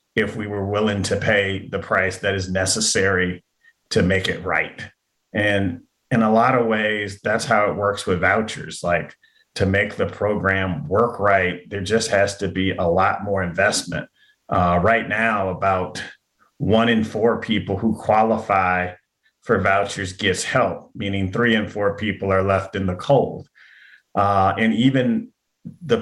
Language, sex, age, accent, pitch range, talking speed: English, male, 30-49, American, 95-115 Hz, 165 wpm